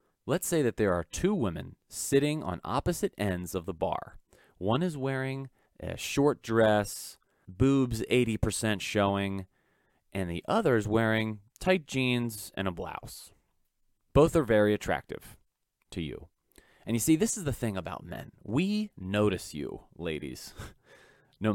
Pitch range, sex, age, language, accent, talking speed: 95-120 Hz, male, 30-49, English, American, 150 wpm